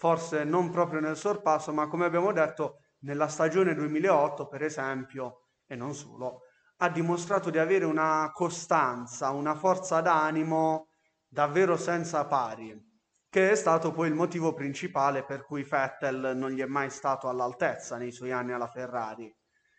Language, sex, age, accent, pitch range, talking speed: Italian, male, 30-49, native, 135-170 Hz, 150 wpm